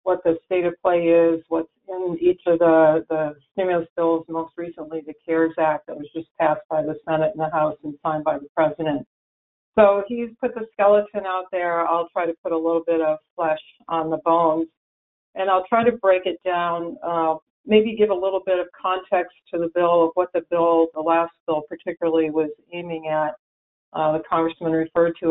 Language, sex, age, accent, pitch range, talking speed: English, female, 50-69, American, 160-180 Hz, 205 wpm